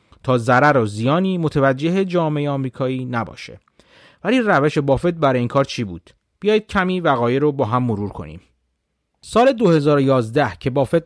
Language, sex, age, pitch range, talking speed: Persian, male, 30-49, 120-165 Hz, 150 wpm